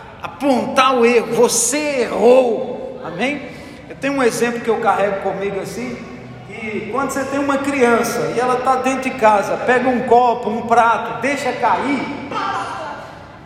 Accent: Brazilian